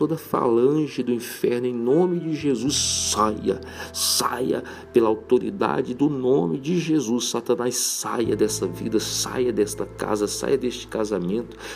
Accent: Brazilian